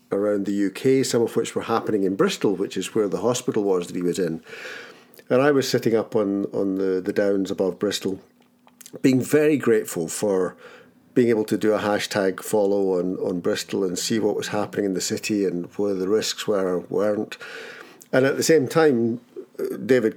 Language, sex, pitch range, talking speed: English, male, 100-125 Hz, 200 wpm